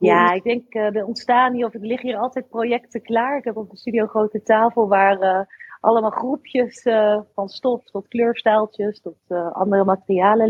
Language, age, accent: Dutch, 30-49, Dutch